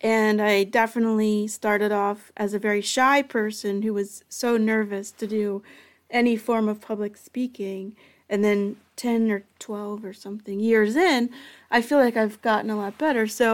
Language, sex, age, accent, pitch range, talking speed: English, female, 30-49, American, 205-230 Hz, 175 wpm